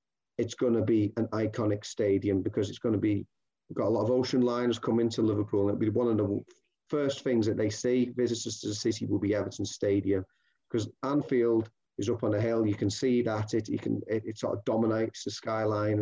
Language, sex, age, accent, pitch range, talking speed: English, male, 30-49, British, 110-130 Hz, 230 wpm